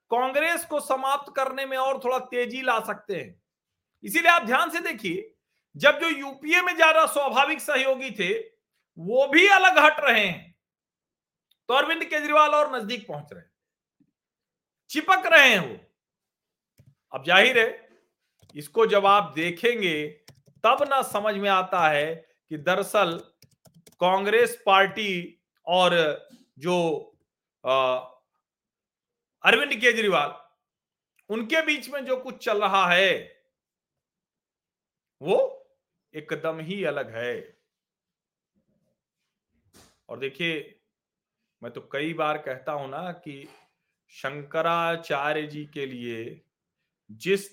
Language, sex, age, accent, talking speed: Hindi, male, 50-69, native, 115 wpm